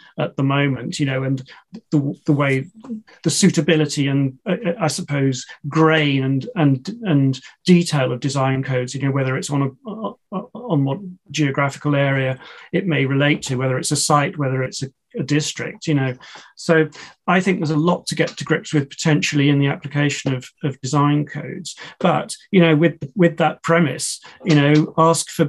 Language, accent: English, British